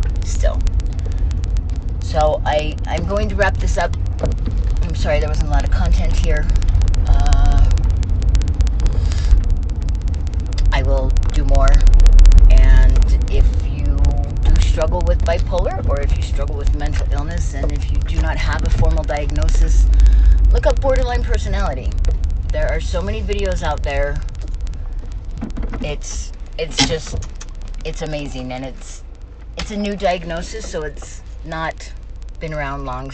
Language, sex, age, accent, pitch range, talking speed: English, female, 30-49, American, 75-120 Hz, 135 wpm